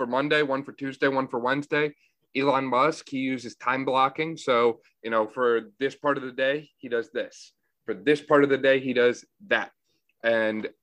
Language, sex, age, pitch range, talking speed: English, male, 30-49, 115-140 Hz, 200 wpm